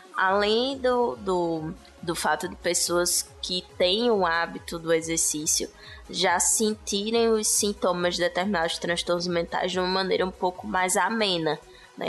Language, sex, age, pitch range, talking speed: Portuguese, female, 10-29, 175-215 Hz, 140 wpm